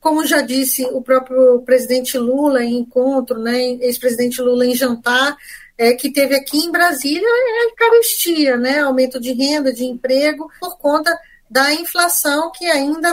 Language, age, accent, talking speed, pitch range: Portuguese, 10-29, Brazilian, 165 wpm, 255-315 Hz